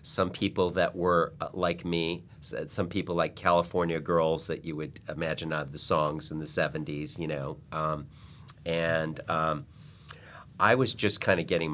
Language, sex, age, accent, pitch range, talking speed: English, male, 40-59, American, 75-95 Hz, 165 wpm